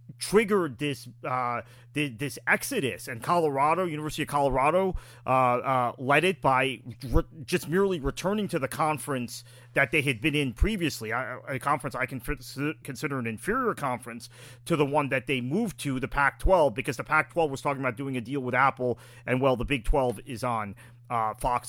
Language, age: English, 30-49